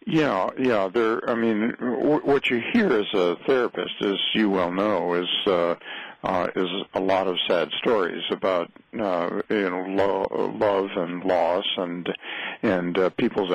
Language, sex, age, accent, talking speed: English, male, 50-69, American, 165 wpm